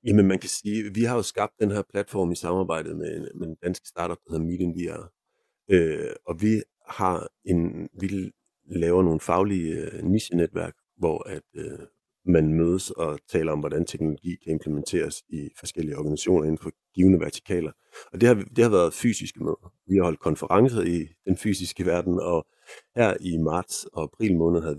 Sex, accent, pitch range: male, native, 80-95 Hz